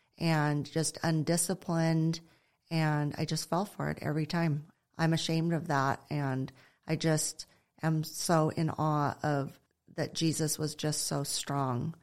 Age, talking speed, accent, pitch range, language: 40-59, 145 wpm, American, 150-175 Hz, English